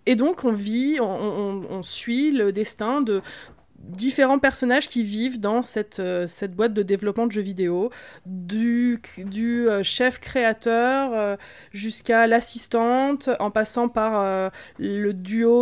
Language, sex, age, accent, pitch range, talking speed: French, female, 20-39, French, 200-255 Hz, 135 wpm